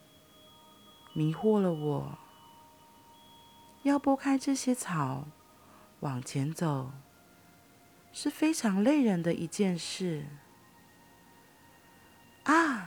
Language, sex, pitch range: Chinese, female, 140-205 Hz